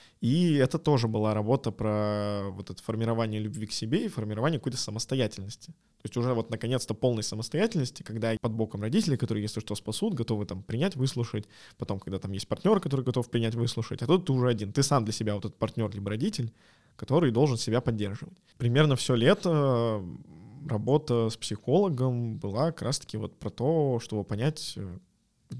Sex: male